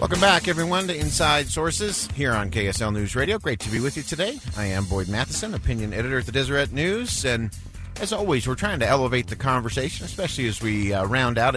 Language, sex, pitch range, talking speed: English, male, 100-130 Hz, 220 wpm